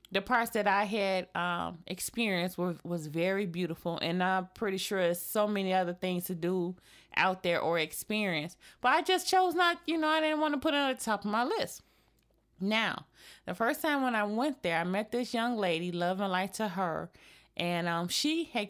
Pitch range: 175-230 Hz